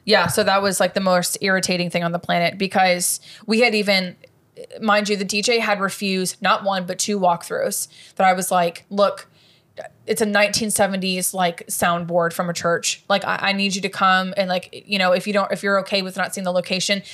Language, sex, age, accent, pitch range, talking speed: English, female, 20-39, American, 190-230 Hz, 215 wpm